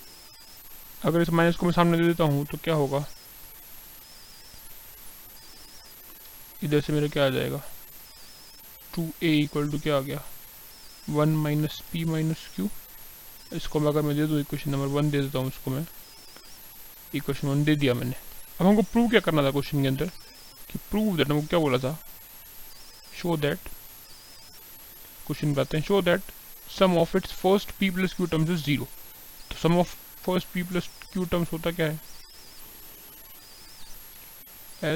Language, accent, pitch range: Hindi, native, 145-170 Hz